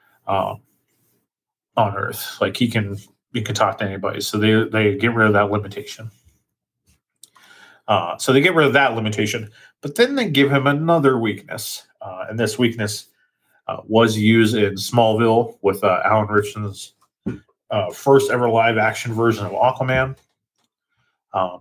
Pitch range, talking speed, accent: 105-130 Hz, 155 wpm, American